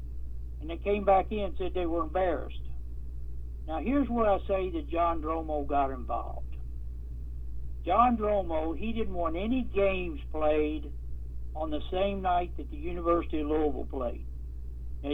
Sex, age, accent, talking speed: male, 60-79, American, 150 wpm